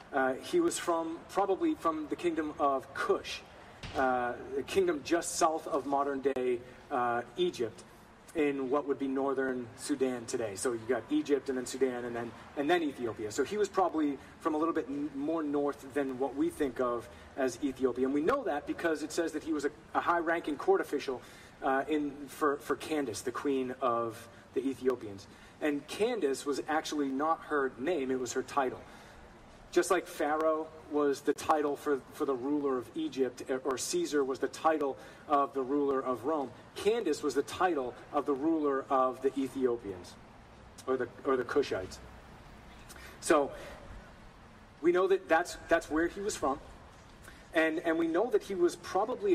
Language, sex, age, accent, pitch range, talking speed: English, male, 30-49, American, 130-165 Hz, 180 wpm